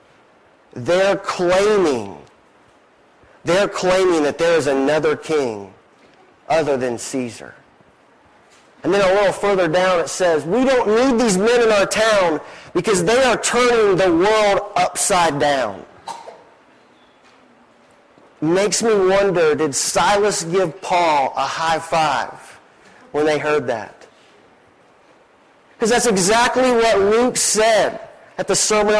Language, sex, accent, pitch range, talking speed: English, male, American, 175-220 Hz, 120 wpm